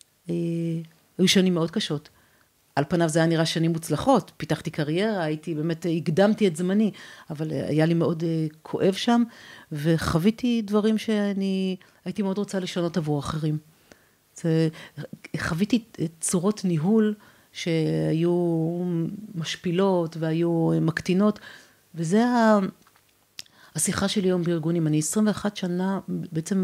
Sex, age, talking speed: female, 40-59, 110 wpm